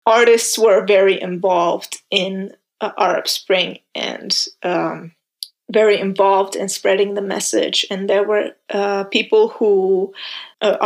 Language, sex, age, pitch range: English, female, 20-39, 190-240 Hz